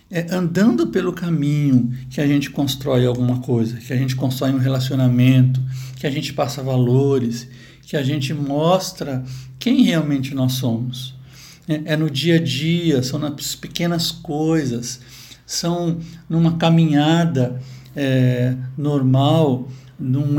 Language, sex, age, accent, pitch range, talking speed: Portuguese, male, 60-79, Brazilian, 130-165 Hz, 130 wpm